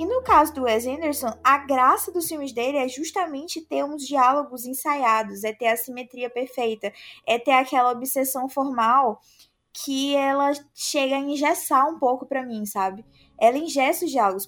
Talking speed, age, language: 170 wpm, 20-39, Portuguese